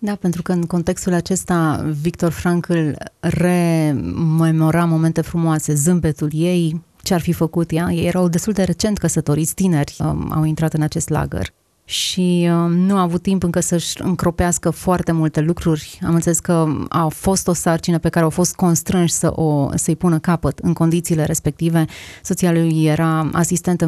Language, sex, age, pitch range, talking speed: Romanian, female, 30-49, 160-180 Hz, 170 wpm